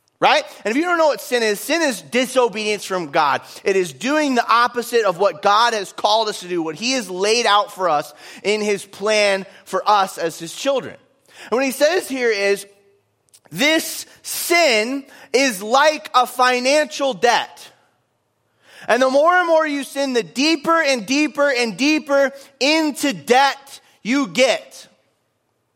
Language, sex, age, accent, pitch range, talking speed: English, male, 30-49, American, 200-285 Hz, 170 wpm